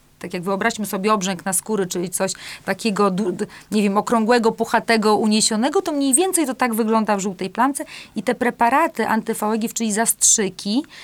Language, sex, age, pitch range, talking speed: Polish, female, 40-59, 200-245 Hz, 165 wpm